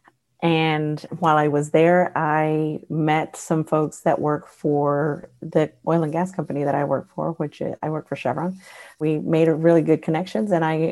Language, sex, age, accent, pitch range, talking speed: English, female, 30-49, American, 150-170 Hz, 190 wpm